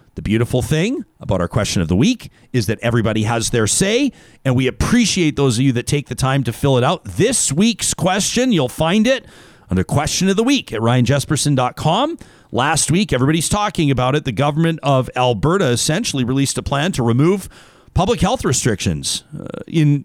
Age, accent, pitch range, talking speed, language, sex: 40-59, American, 120-165 Hz, 185 wpm, English, male